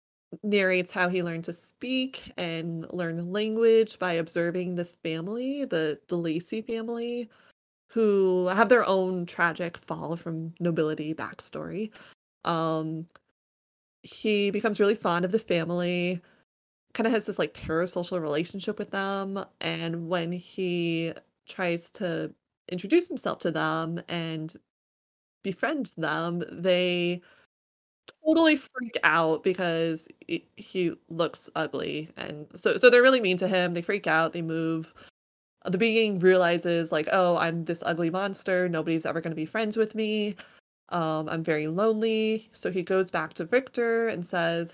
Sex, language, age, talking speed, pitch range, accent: female, English, 20-39, 140 wpm, 165-215 Hz, American